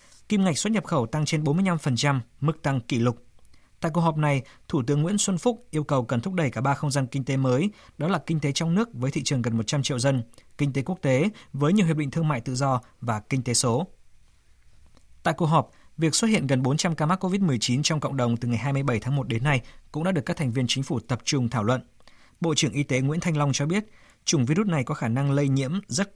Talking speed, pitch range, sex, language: 260 wpm, 125-160 Hz, male, Vietnamese